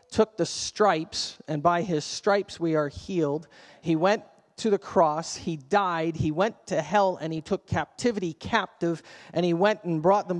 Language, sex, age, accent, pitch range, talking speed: English, male, 40-59, American, 165-200 Hz, 185 wpm